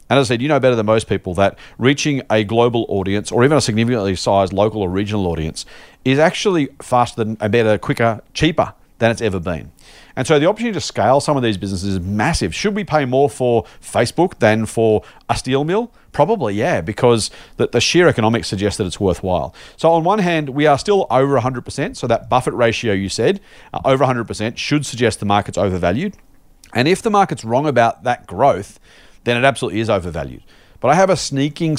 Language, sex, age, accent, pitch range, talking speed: English, male, 40-59, Australian, 105-135 Hz, 210 wpm